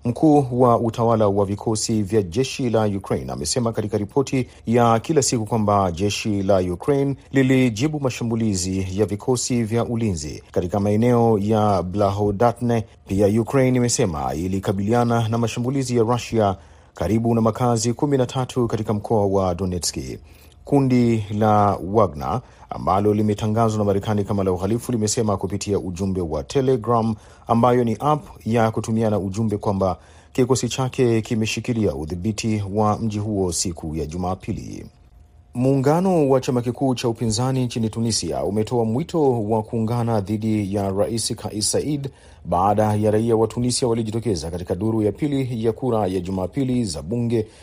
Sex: male